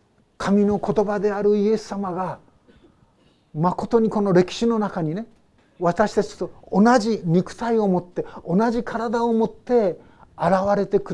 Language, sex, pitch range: Japanese, male, 175-215 Hz